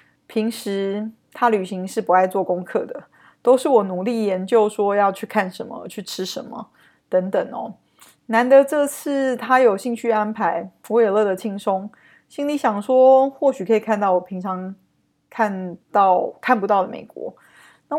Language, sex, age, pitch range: Chinese, female, 20-39, 190-240 Hz